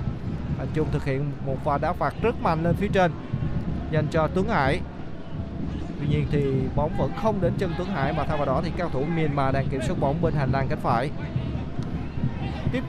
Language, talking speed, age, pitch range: Vietnamese, 210 wpm, 20-39, 160-225 Hz